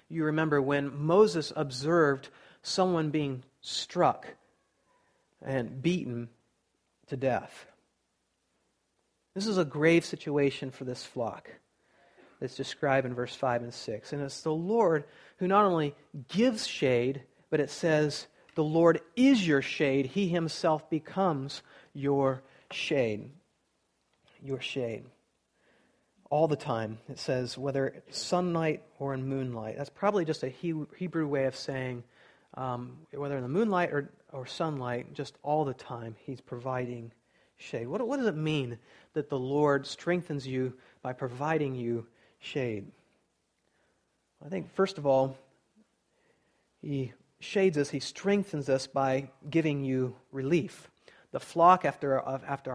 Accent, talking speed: American, 135 wpm